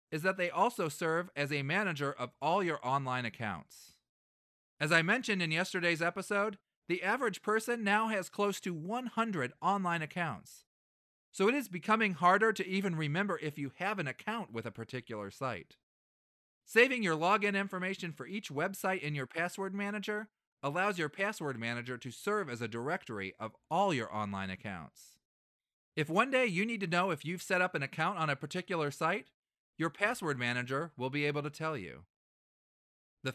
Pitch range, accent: 120-195 Hz, American